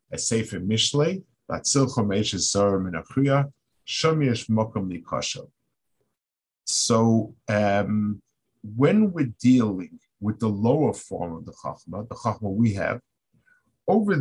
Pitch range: 105-130 Hz